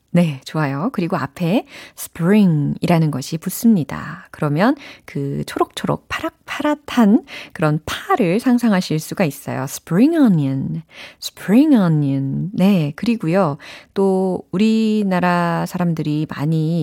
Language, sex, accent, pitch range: Korean, female, native, 155-240 Hz